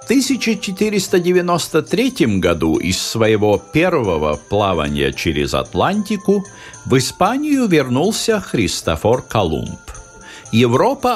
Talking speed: 80 wpm